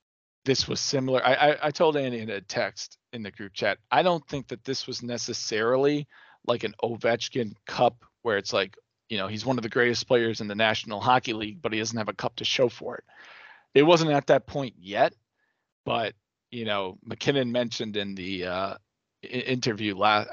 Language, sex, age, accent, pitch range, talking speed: English, male, 40-59, American, 105-125 Hz, 200 wpm